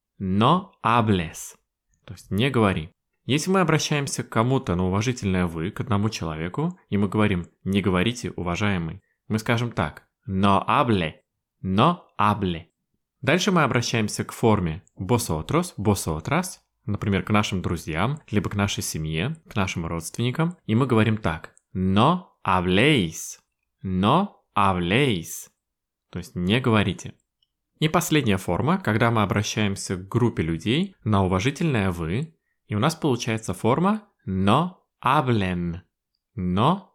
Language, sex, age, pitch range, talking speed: Russian, male, 20-39, 95-135 Hz, 130 wpm